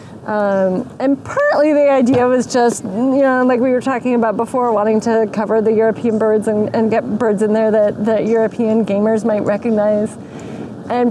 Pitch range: 210-255 Hz